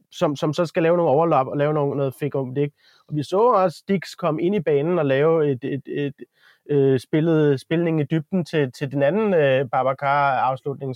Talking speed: 215 wpm